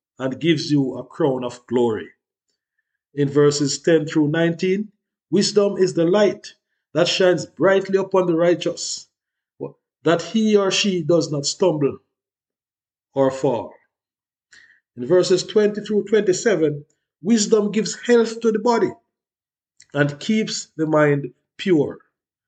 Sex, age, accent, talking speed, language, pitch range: male, 50-69, Nigerian, 125 wpm, English, 140-205 Hz